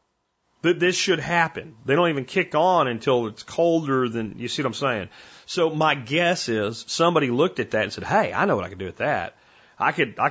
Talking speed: 235 wpm